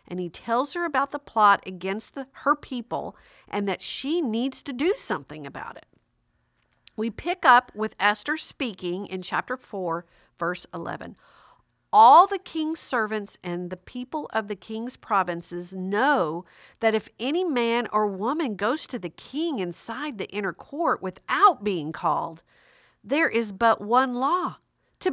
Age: 50-69